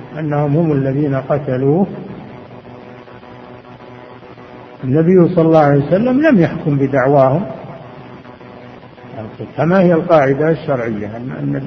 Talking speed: 80 wpm